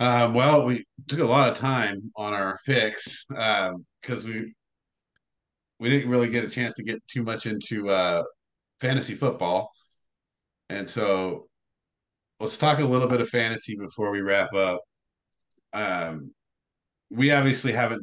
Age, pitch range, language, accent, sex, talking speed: 40-59, 95-120 Hz, English, American, male, 150 wpm